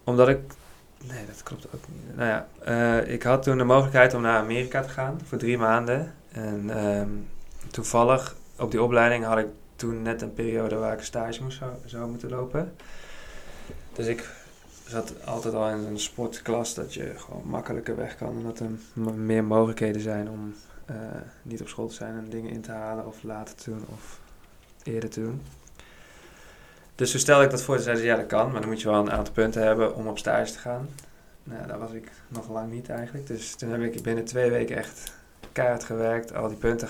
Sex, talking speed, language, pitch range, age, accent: male, 210 wpm, Dutch, 110-120 Hz, 20-39, Dutch